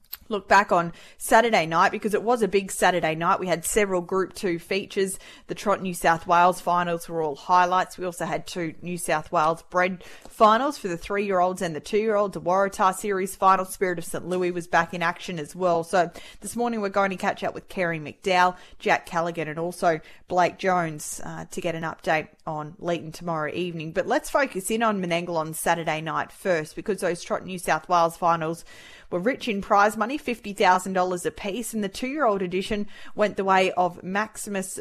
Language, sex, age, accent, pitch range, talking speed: English, female, 20-39, Australian, 170-210 Hz, 200 wpm